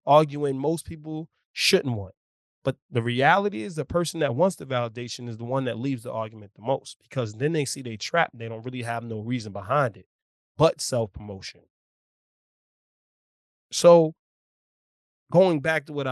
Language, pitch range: English, 115-145 Hz